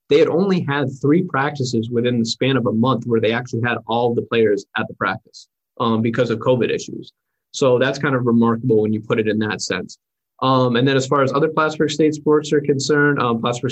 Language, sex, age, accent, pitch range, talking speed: English, male, 20-39, American, 115-135 Hz, 230 wpm